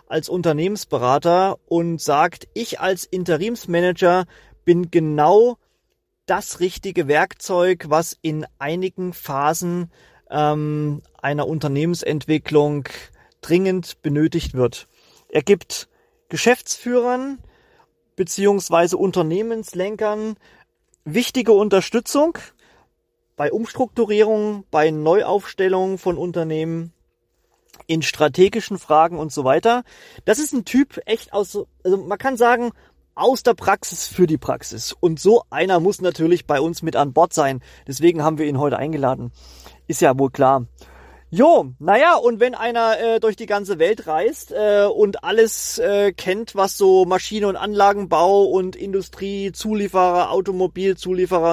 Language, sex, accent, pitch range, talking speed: German, male, German, 155-210 Hz, 120 wpm